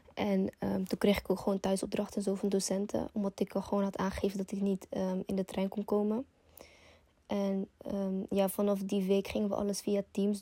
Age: 20-39